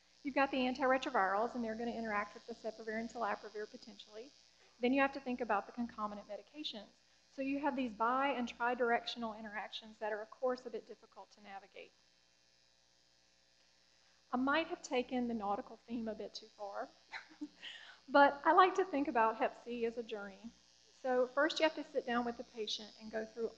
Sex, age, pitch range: female, 40-59, 215-255 Hz